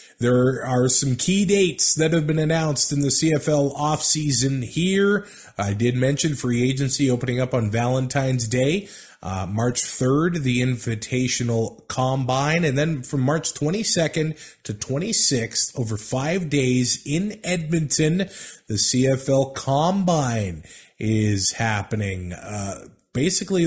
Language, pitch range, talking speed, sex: English, 115-155 Hz, 125 wpm, male